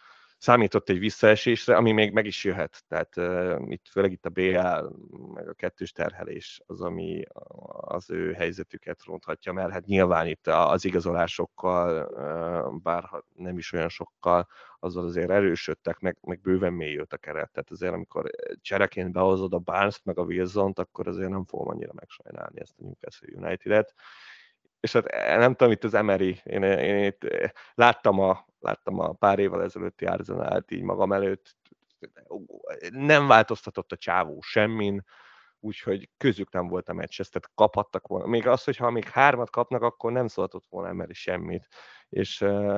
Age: 30-49